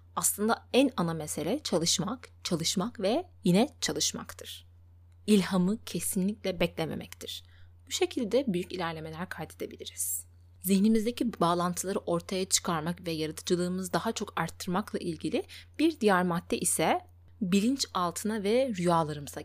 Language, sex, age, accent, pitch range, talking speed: Turkish, female, 20-39, native, 150-205 Hz, 110 wpm